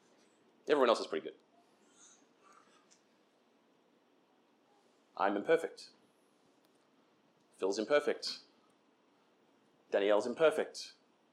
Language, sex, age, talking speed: English, male, 40-59, 60 wpm